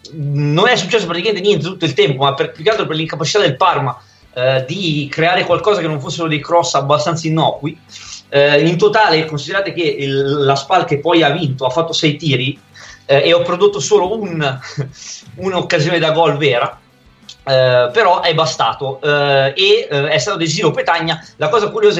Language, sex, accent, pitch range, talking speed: Italian, male, native, 140-170 Hz, 185 wpm